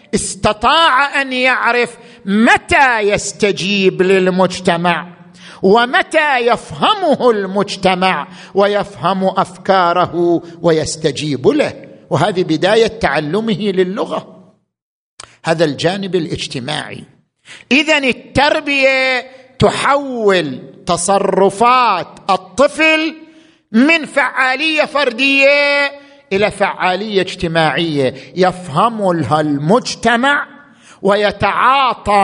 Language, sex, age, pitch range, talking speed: Arabic, male, 50-69, 175-245 Hz, 65 wpm